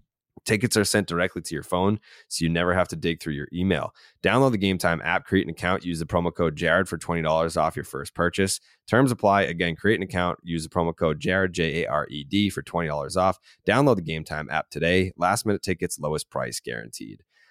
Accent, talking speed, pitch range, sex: American, 200 wpm, 80-100 Hz, male